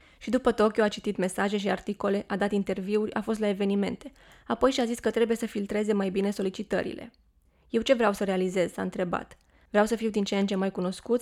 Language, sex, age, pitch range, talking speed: Romanian, female, 20-39, 195-225 Hz, 220 wpm